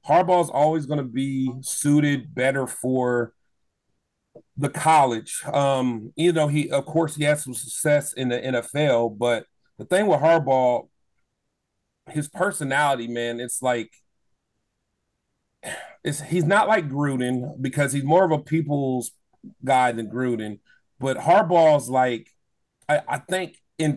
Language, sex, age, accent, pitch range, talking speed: English, male, 40-59, American, 125-155 Hz, 135 wpm